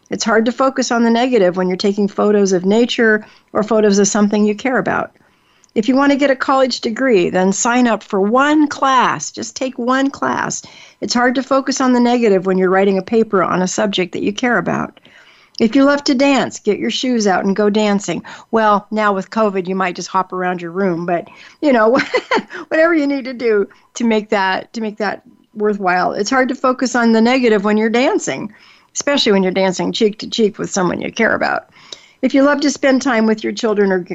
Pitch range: 190-250 Hz